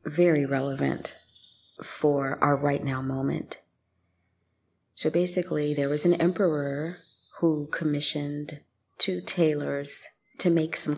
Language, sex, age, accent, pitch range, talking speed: English, female, 30-49, American, 100-165 Hz, 110 wpm